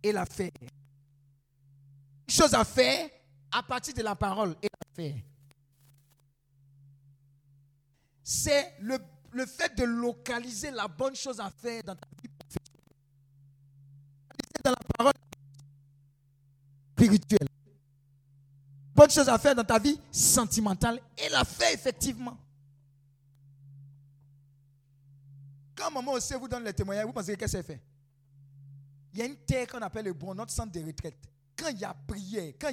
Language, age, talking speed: French, 50-69, 140 wpm